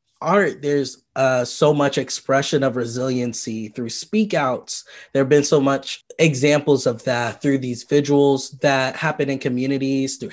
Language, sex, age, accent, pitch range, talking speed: English, male, 20-39, American, 130-155 Hz, 150 wpm